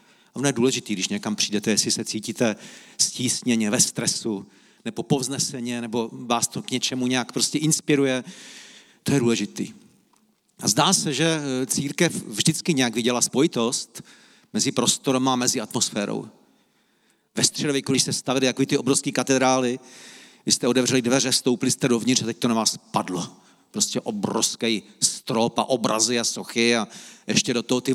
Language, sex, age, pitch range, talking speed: Czech, male, 40-59, 120-145 Hz, 160 wpm